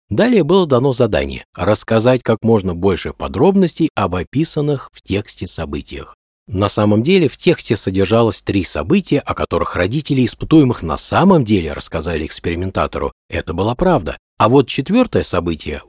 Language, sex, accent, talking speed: Russian, male, native, 145 wpm